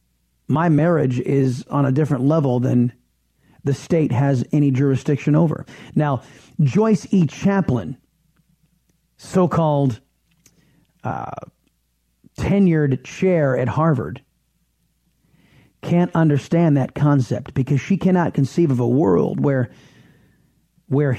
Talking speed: 100 wpm